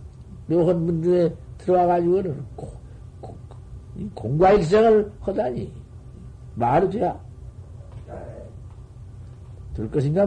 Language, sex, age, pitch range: Korean, male, 60-79, 115-160 Hz